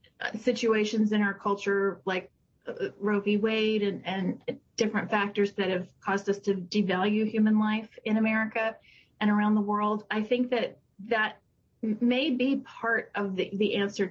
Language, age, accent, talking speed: English, 30-49, American, 160 wpm